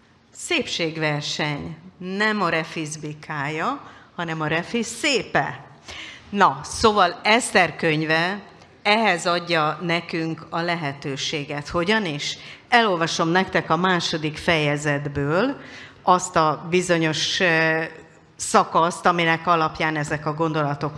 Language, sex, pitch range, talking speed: Hungarian, female, 150-190 Hz, 95 wpm